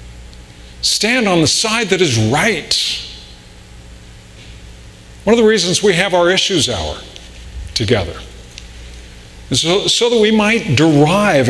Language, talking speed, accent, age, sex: English, 125 wpm, American, 50-69, male